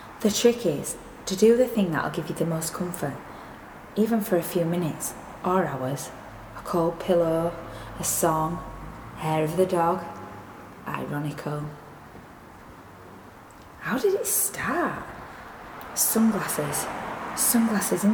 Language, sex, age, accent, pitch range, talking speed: English, female, 20-39, British, 150-200 Hz, 120 wpm